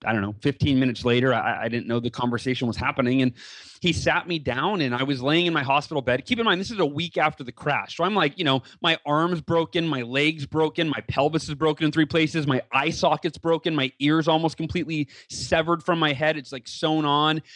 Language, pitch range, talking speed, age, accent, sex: English, 130-160 Hz, 245 wpm, 30-49, American, male